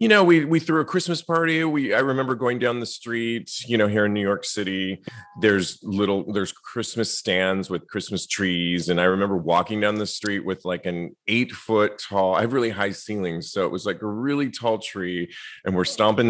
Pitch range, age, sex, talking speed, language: 95-130 Hz, 30-49, male, 215 wpm, English